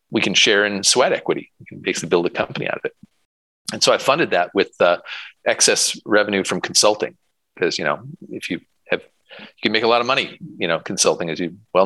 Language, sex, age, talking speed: English, male, 40-59, 230 wpm